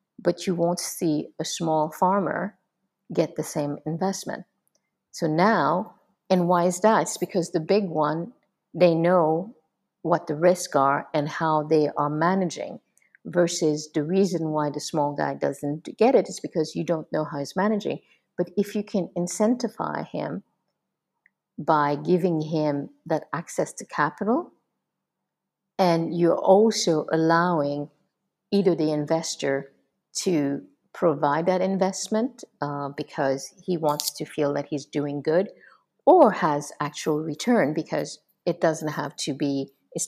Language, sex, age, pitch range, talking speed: English, female, 50-69, 150-185 Hz, 145 wpm